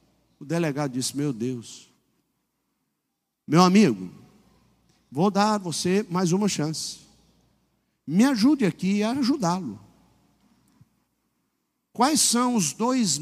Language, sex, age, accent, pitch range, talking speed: Portuguese, male, 50-69, Brazilian, 140-205 Hz, 105 wpm